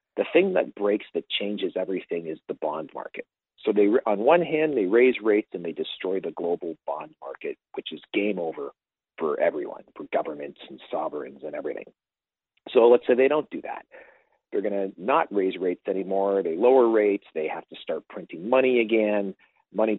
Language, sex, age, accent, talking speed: English, male, 40-59, American, 190 wpm